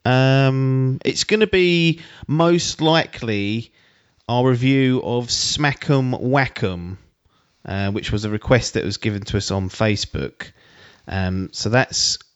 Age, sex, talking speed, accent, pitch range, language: 30-49, male, 130 wpm, British, 95-115 Hz, English